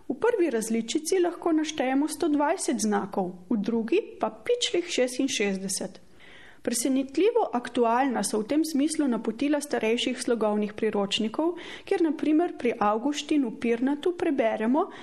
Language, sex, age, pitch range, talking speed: Italian, female, 30-49, 225-325 Hz, 120 wpm